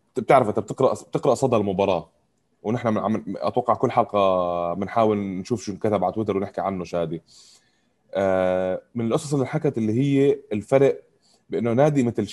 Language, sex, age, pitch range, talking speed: Arabic, male, 20-39, 100-125 Hz, 145 wpm